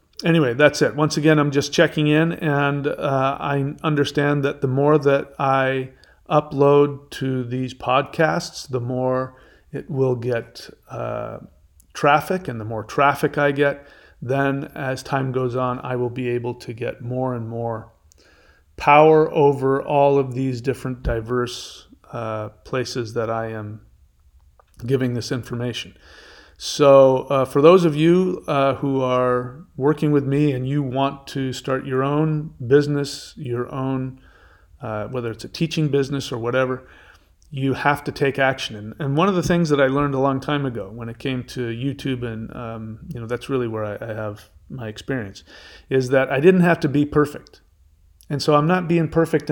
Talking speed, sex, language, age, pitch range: 175 wpm, male, English, 40-59, 120-145 Hz